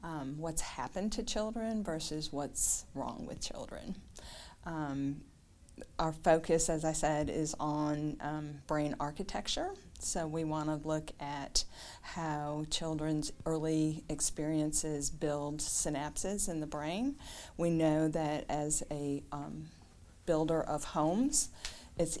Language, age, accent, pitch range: English, 40-59, American, 150-175 Hz